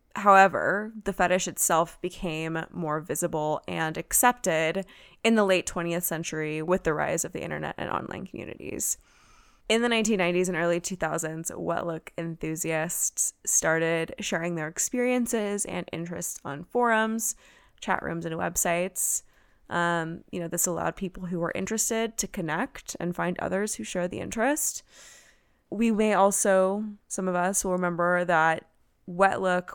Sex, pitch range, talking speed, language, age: female, 170-210 Hz, 145 wpm, English, 20-39